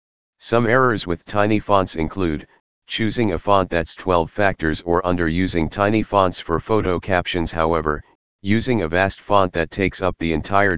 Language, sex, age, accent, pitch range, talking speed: English, male, 40-59, American, 85-100 Hz, 165 wpm